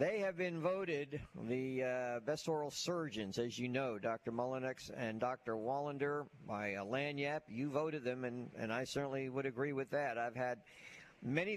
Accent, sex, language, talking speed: American, male, English, 175 wpm